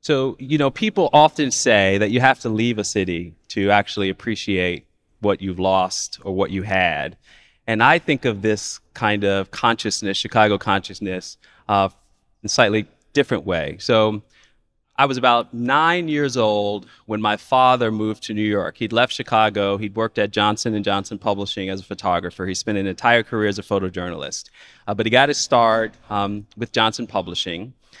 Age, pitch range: 30-49, 100-125 Hz